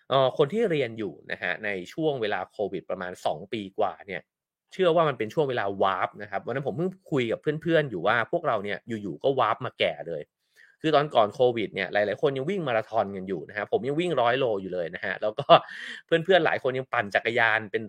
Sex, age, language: male, 30-49, English